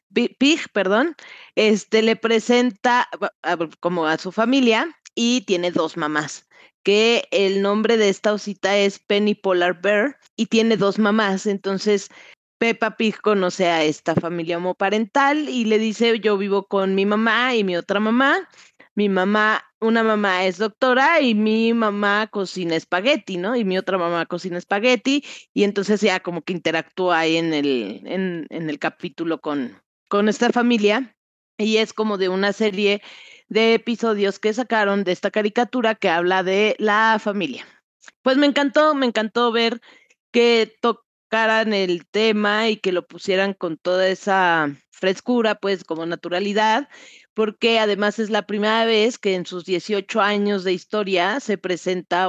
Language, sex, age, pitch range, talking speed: Spanish, female, 30-49, 185-225 Hz, 160 wpm